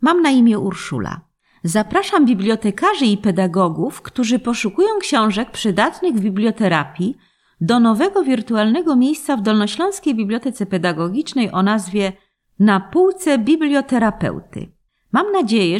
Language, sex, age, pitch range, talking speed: Polish, female, 40-59, 170-260 Hz, 110 wpm